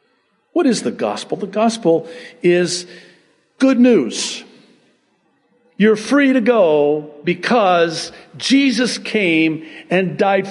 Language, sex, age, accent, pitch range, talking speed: English, male, 50-69, American, 160-230 Hz, 105 wpm